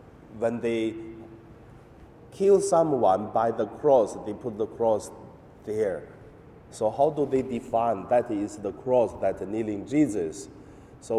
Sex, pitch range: male, 110-145 Hz